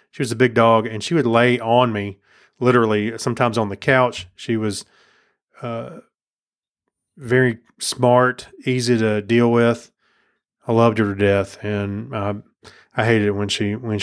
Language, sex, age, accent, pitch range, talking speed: English, male, 30-49, American, 105-125 Hz, 165 wpm